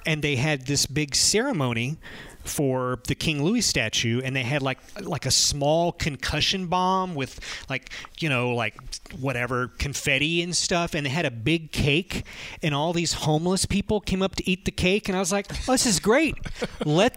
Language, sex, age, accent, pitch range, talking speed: English, male, 30-49, American, 120-170 Hz, 190 wpm